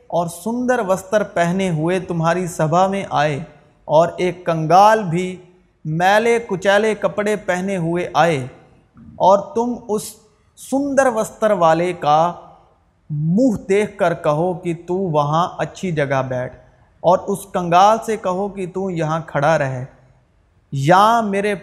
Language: Urdu